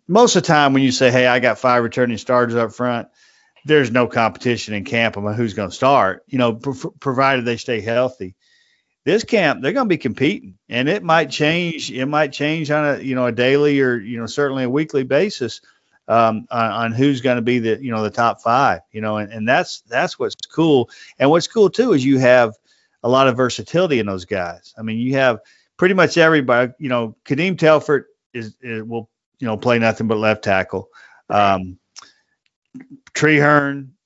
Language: English